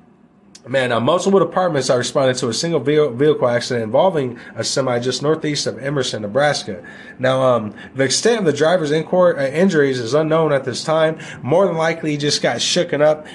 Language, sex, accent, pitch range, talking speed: English, male, American, 125-185 Hz, 200 wpm